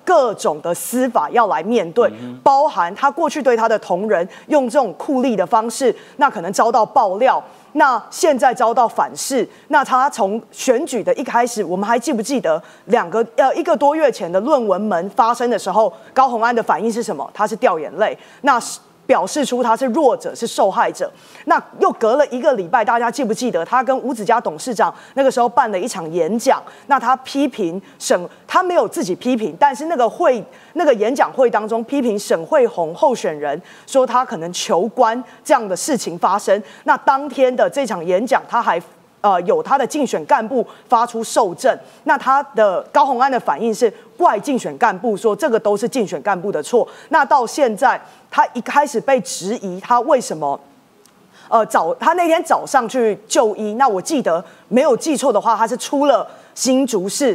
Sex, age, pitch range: female, 30-49, 215-280 Hz